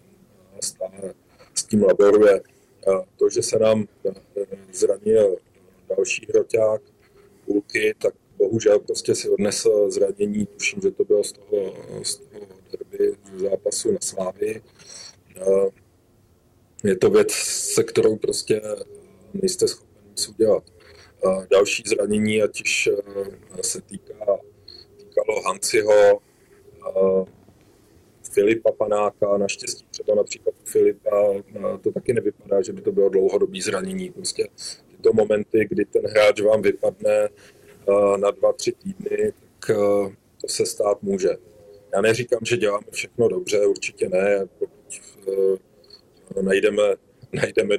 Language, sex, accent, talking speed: Czech, male, native, 115 wpm